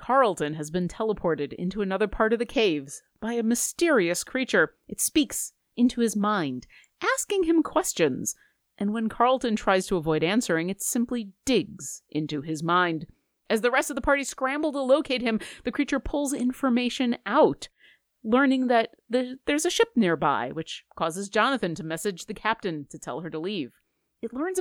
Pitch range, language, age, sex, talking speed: 175-260 Hz, English, 30-49, female, 170 wpm